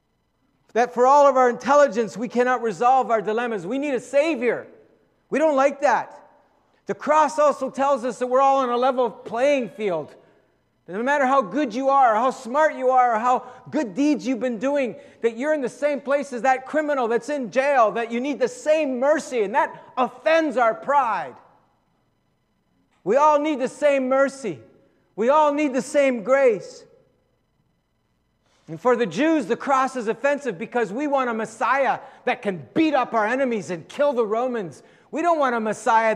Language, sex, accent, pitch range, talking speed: English, male, American, 185-275 Hz, 190 wpm